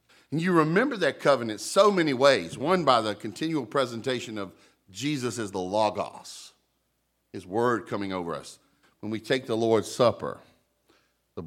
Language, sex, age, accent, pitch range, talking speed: English, male, 50-69, American, 90-135 Hz, 155 wpm